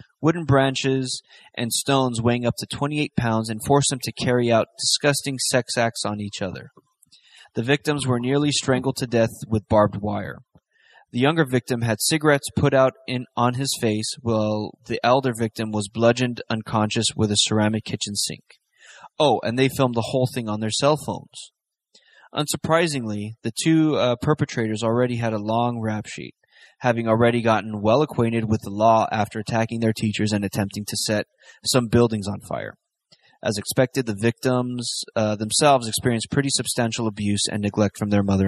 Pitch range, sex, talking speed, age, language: 110-130 Hz, male, 175 wpm, 20-39, English